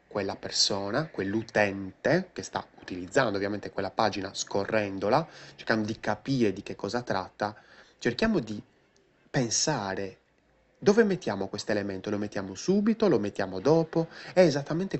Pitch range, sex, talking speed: 100-135 Hz, male, 130 wpm